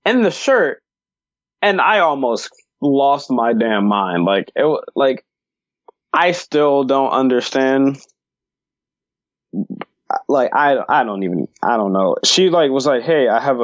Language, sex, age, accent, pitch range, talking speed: English, male, 20-39, American, 120-180 Hz, 140 wpm